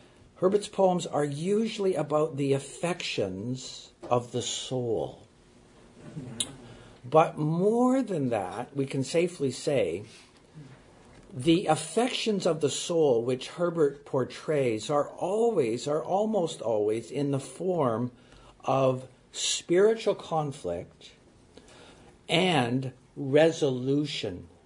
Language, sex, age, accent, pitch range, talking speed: English, male, 60-79, American, 125-165 Hz, 95 wpm